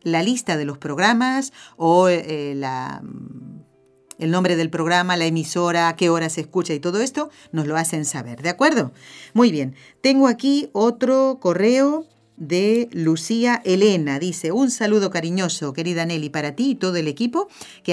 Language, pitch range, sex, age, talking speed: Spanish, 155-215 Hz, female, 50-69, 160 wpm